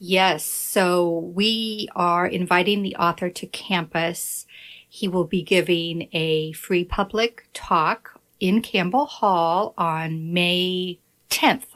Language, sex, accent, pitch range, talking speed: English, female, American, 170-205 Hz, 115 wpm